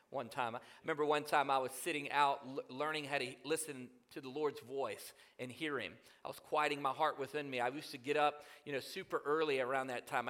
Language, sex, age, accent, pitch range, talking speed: English, male, 40-59, American, 120-145 Hz, 235 wpm